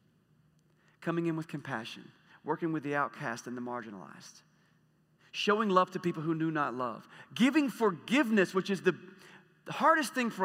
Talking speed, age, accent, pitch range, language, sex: 160 wpm, 40-59, American, 150-185 Hz, English, male